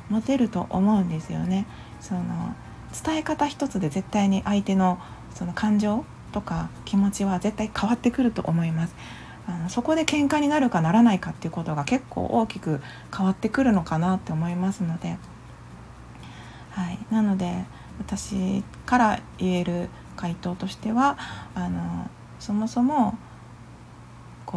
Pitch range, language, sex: 185-255 Hz, Japanese, female